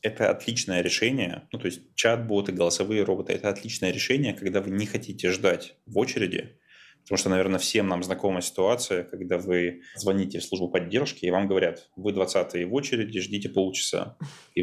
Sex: male